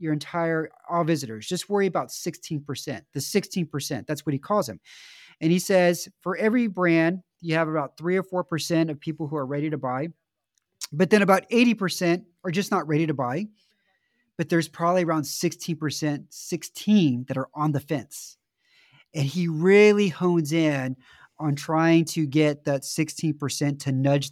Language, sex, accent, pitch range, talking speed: English, male, American, 150-185 Hz, 170 wpm